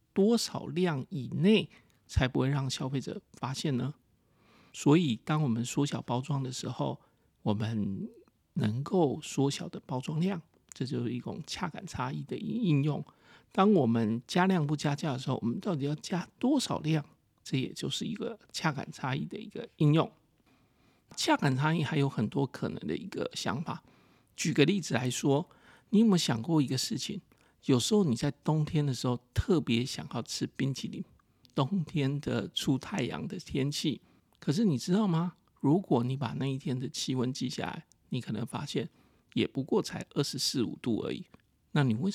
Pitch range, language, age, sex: 125-170 Hz, Chinese, 50-69, male